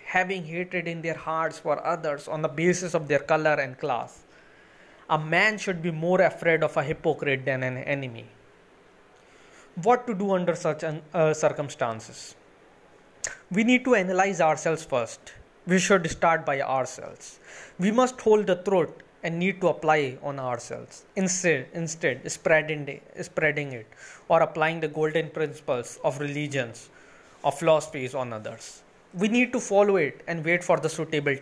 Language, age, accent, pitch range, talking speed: English, 20-39, Indian, 150-185 Hz, 155 wpm